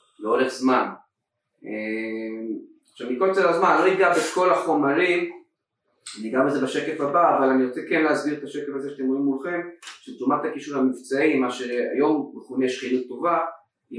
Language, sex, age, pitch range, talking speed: Hebrew, male, 30-49, 115-160 Hz, 155 wpm